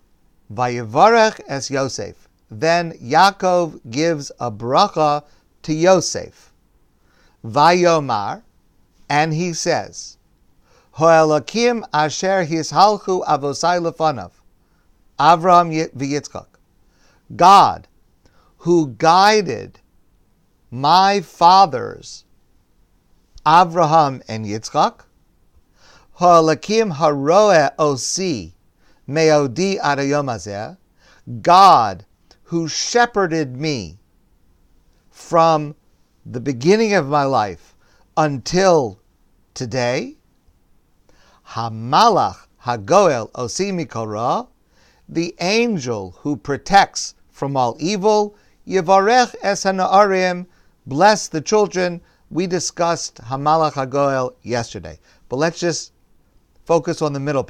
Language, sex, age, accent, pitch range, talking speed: English, male, 50-69, American, 110-175 Hz, 70 wpm